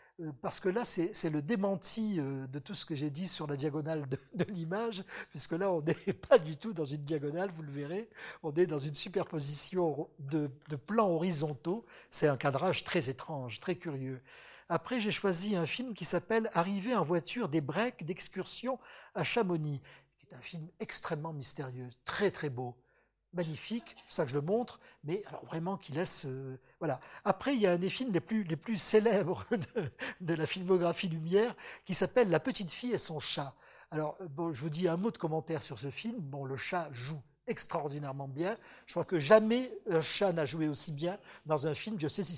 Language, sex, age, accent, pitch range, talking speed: French, male, 50-69, French, 150-195 Hz, 205 wpm